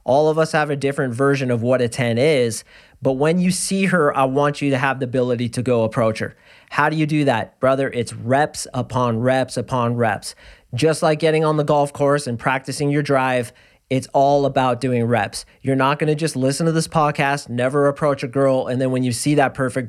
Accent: American